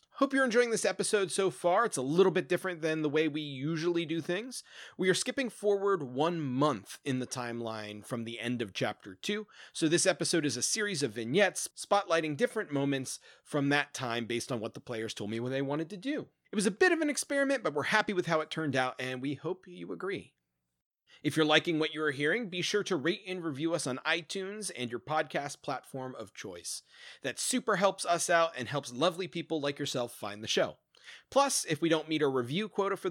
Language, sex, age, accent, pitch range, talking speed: English, male, 30-49, American, 130-190 Hz, 225 wpm